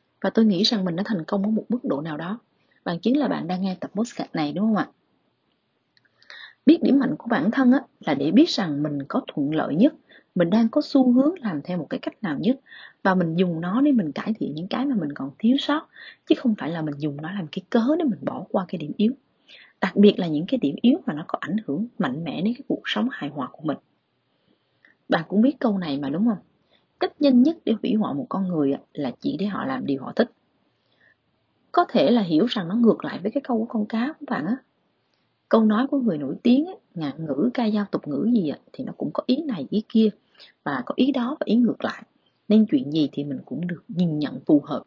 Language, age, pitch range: Vietnamese, 20-39, 180-265 Hz